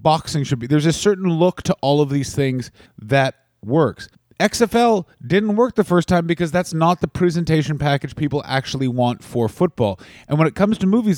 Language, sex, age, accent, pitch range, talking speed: English, male, 30-49, American, 135-170 Hz, 200 wpm